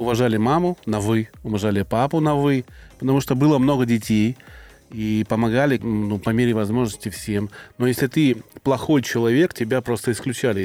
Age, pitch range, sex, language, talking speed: 30-49, 110-135 Hz, male, Russian, 160 wpm